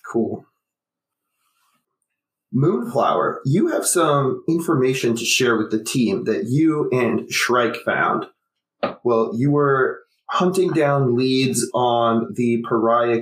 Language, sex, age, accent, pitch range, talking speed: English, male, 30-49, American, 115-140 Hz, 115 wpm